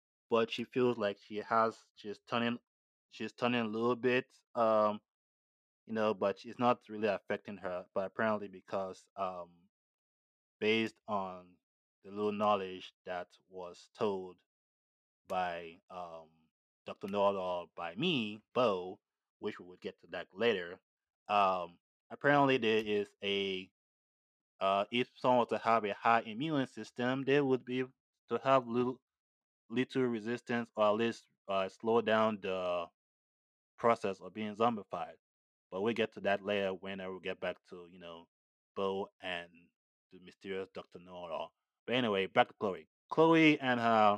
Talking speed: 150 wpm